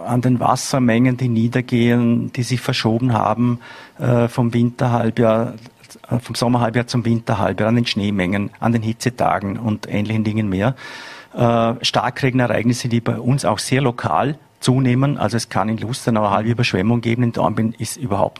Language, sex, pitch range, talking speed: German, male, 110-125 Hz, 155 wpm